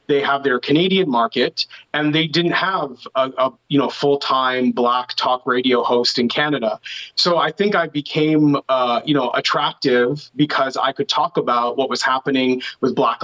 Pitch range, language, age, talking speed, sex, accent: 125-150 Hz, English, 30-49, 180 wpm, male, American